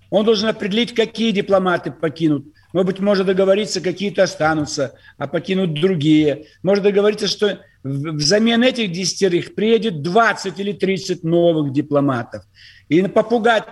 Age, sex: 50-69, male